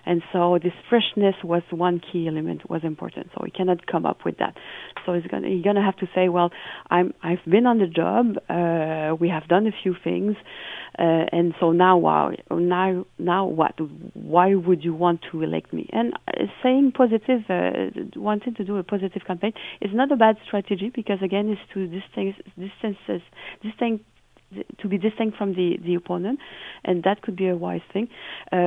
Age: 40-59